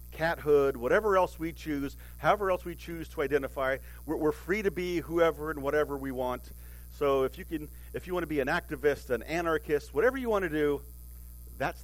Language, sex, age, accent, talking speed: English, male, 50-69, American, 210 wpm